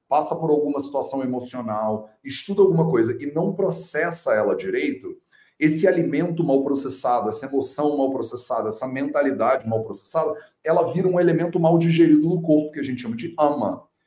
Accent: Brazilian